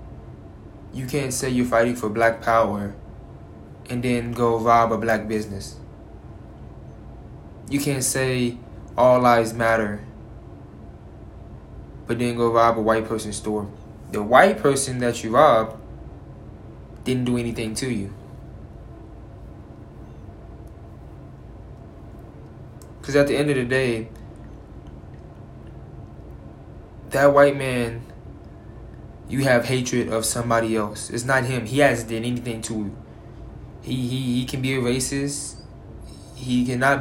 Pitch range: 110-125 Hz